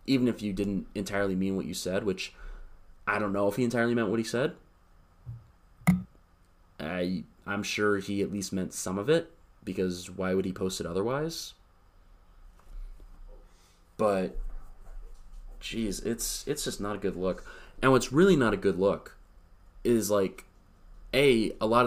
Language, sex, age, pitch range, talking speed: English, male, 20-39, 90-115 Hz, 160 wpm